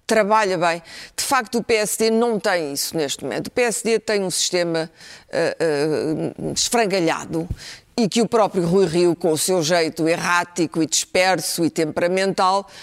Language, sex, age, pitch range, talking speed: Portuguese, female, 40-59, 170-245 Hz, 160 wpm